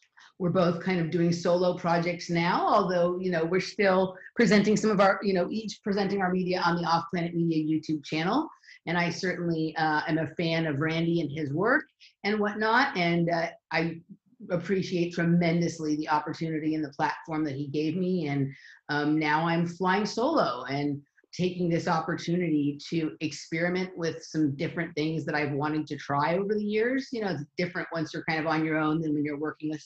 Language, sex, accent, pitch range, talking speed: English, female, American, 155-185 Hz, 195 wpm